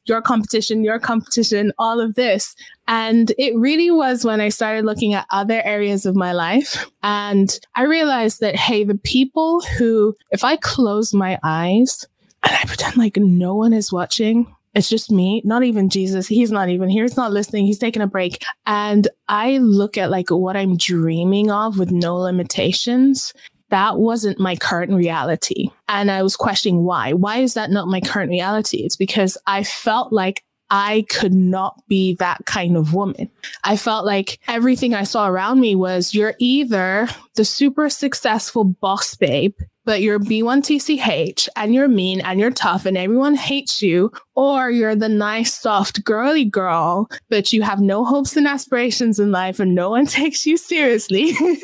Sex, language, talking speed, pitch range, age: female, English, 175 wpm, 195-245 Hz, 20-39